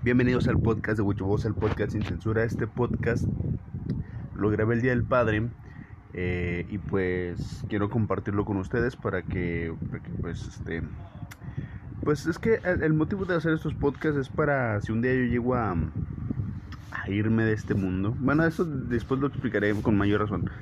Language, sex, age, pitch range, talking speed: Spanish, male, 20-39, 95-120 Hz, 175 wpm